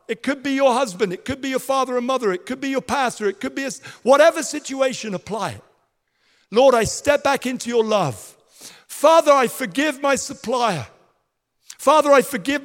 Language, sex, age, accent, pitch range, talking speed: English, male, 50-69, British, 220-275 Hz, 185 wpm